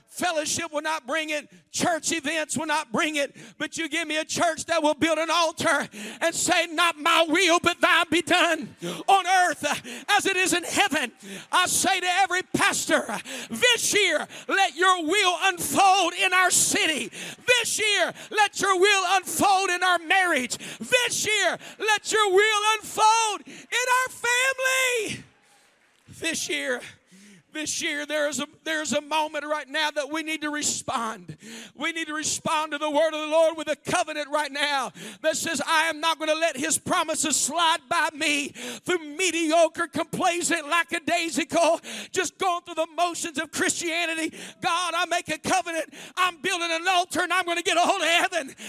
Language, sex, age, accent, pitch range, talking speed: English, male, 50-69, American, 305-365 Hz, 180 wpm